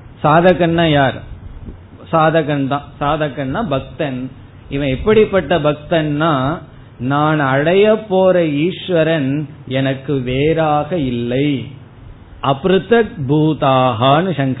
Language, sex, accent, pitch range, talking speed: Tamil, male, native, 125-165 Hz, 65 wpm